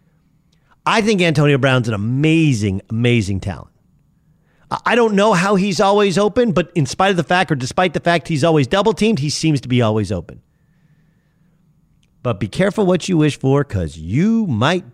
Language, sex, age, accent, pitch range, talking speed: English, male, 40-59, American, 145-180 Hz, 180 wpm